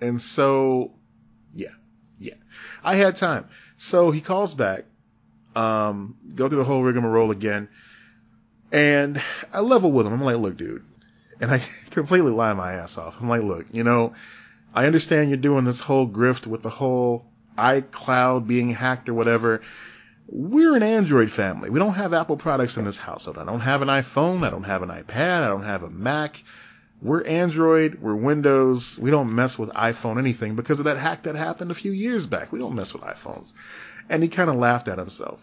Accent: American